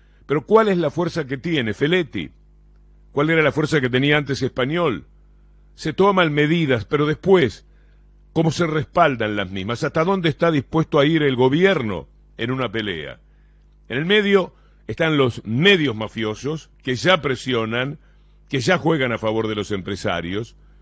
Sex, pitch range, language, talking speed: male, 115-160 Hz, Spanish, 160 wpm